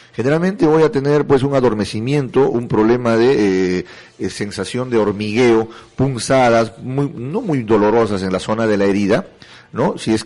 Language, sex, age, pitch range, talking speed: Spanish, male, 40-59, 100-130 Hz, 160 wpm